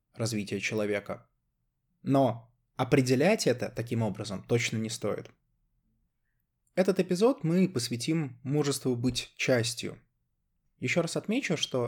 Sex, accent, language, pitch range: male, native, Russian, 115-140 Hz